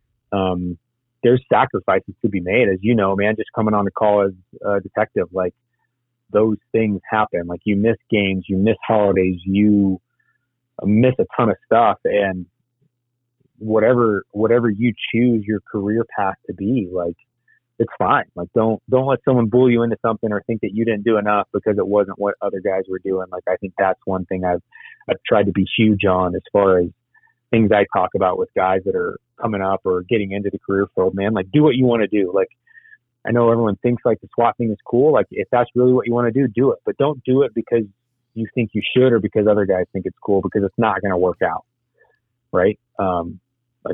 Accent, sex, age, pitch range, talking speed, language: American, male, 30-49, 100-120 Hz, 215 wpm, English